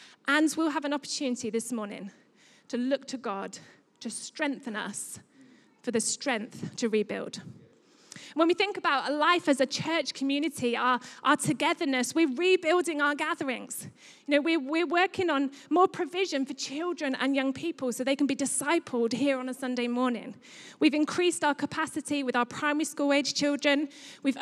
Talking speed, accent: 170 wpm, British